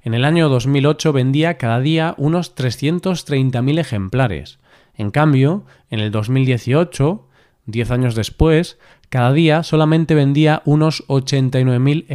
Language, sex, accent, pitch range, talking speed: Spanish, male, Spanish, 120-150 Hz, 120 wpm